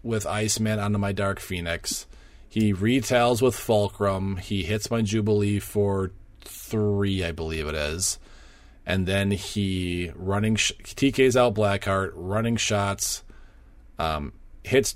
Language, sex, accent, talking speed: English, male, American, 125 wpm